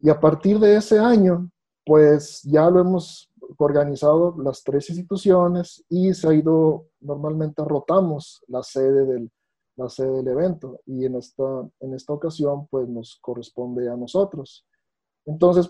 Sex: male